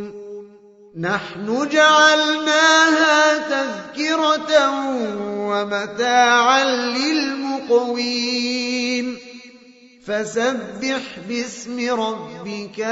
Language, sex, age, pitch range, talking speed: Indonesian, male, 30-49, 220-275 Hz, 45 wpm